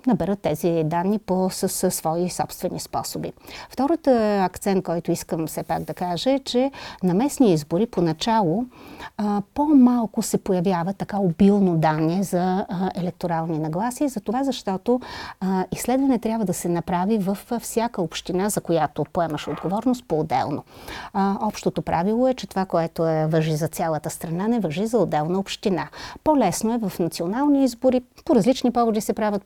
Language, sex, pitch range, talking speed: Bulgarian, female, 175-230 Hz, 160 wpm